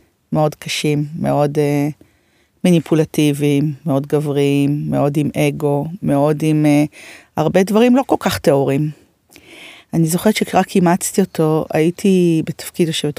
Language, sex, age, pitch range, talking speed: Hebrew, female, 30-49, 150-190 Hz, 125 wpm